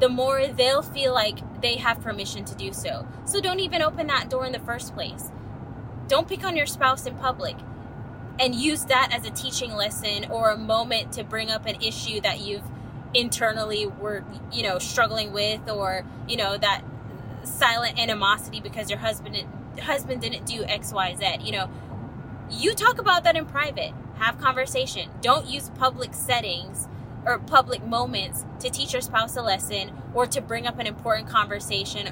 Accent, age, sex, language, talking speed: American, 10-29, female, English, 180 wpm